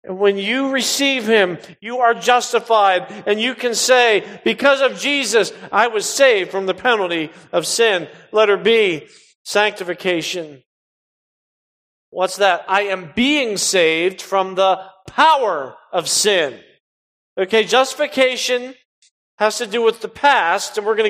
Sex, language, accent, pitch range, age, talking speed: male, English, American, 195-275 Hz, 40-59, 135 wpm